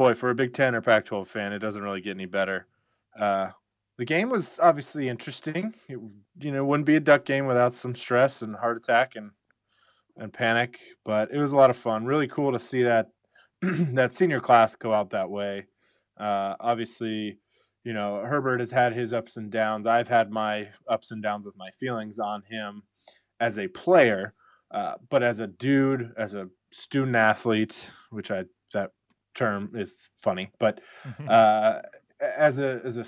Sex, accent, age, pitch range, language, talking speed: male, American, 20-39, 105-130 Hz, English, 185 wpm